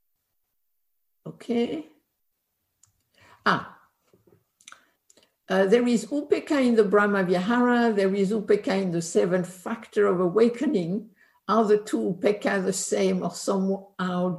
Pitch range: 195-240 Hz